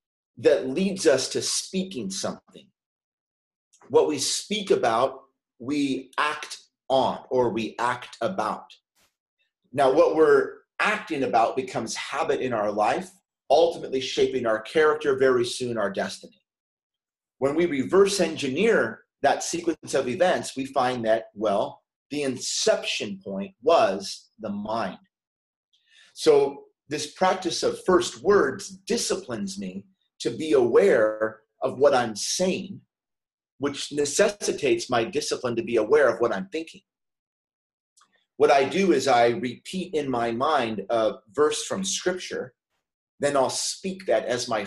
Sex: male